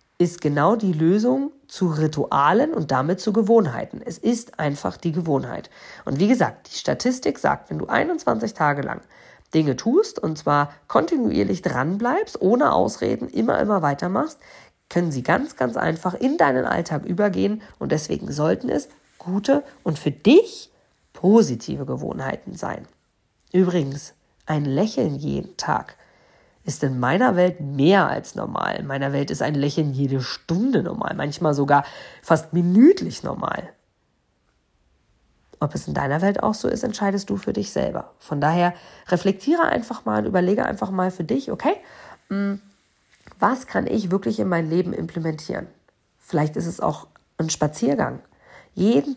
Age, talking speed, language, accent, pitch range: 40-59, 150 wpm, German, German, 155-220 Hz